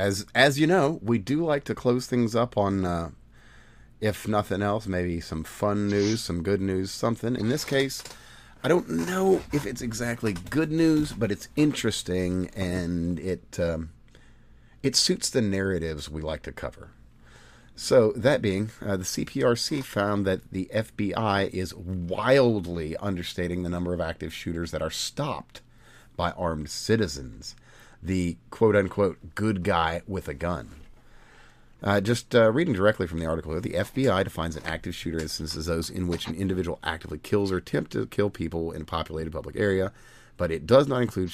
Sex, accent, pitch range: male, American, 85-115 Hz